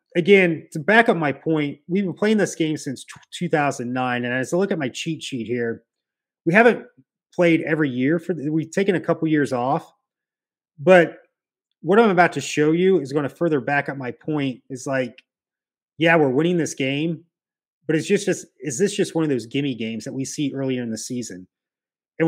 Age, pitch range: 30-49, 135-170 Hz